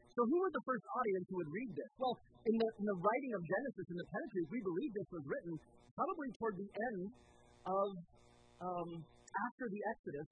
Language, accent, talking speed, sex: English, American, 205 wpm, male